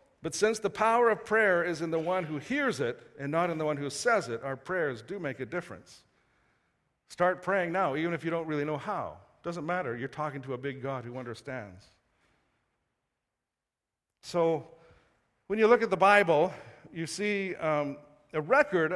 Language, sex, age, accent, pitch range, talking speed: English, male, 50-69, American, 145-195 Hz, 190 wpm